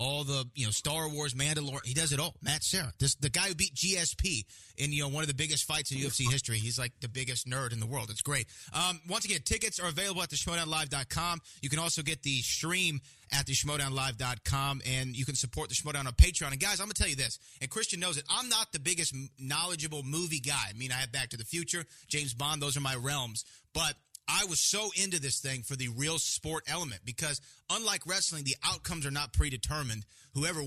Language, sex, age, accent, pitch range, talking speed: English, male, 30-49, American, 130-160 Hz, 235 wpm